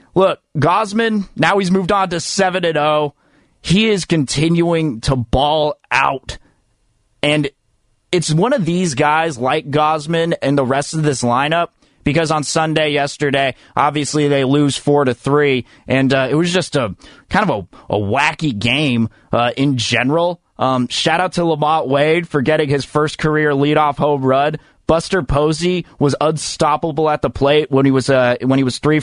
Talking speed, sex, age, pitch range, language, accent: 165 wpm, male, 30-49, 135-160 Hz, English, American